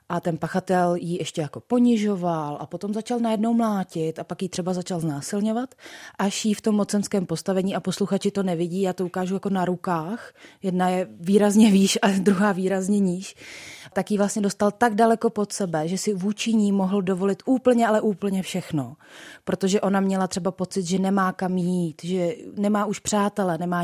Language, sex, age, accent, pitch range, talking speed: Czech, female, 30-49, native, 170-200 Hz, 185 wpm